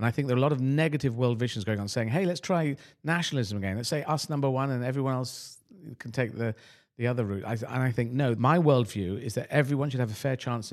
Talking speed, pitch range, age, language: 265 wpm, 110-135 Hz, 40-59, English